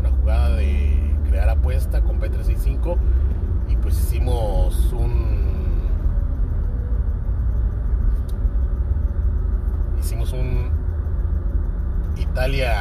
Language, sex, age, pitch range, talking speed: Spanish, male, 40-59, 70-85 Hz, 55 wpm